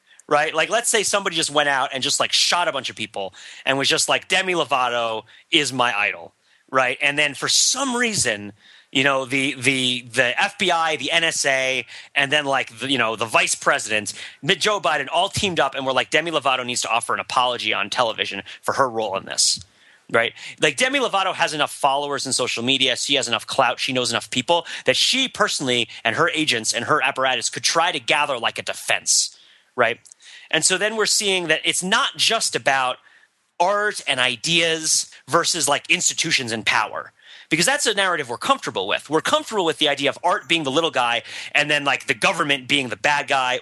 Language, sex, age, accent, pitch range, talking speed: English, male, 30-49, American, 130-175 Hz, 205 wpm